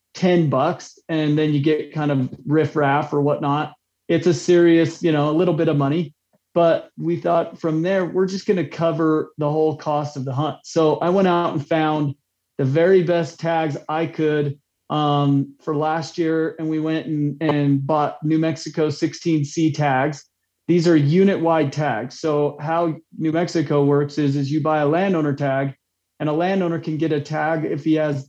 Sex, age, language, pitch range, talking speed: male, 30-49, English, 145-165 Hz, 190 wpm